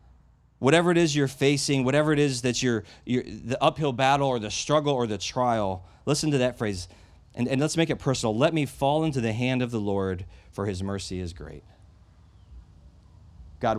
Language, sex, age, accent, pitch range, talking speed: English, male, 30-49, American, 90-125 Hz, 195 wpm